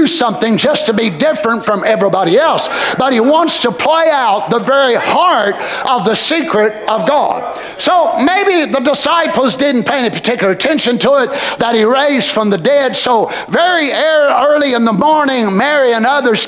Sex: male